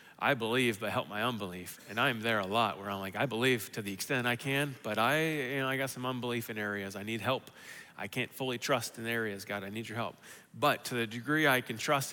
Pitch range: 110-130 Hz